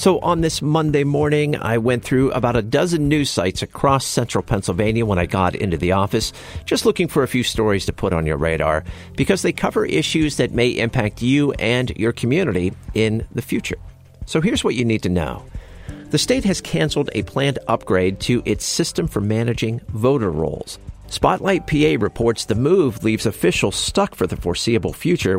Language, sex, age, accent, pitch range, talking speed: English, male, 50-69, American, 90-125 Hz, 190 wpm